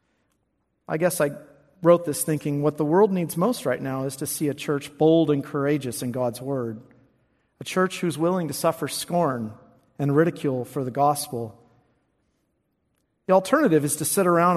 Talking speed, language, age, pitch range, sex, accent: 175 wpm, English, 50-69, 130-170 Hz, male, American